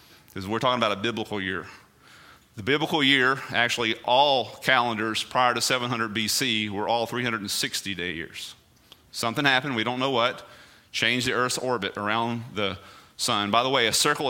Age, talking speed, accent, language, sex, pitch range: 30-49, 170 wpm, American, English, male, 115-145 Hz